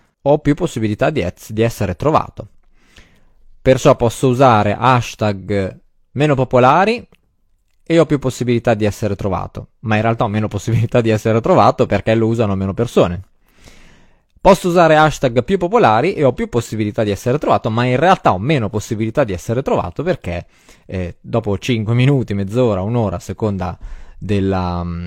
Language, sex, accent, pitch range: Italian, male, native, 100-130 Hz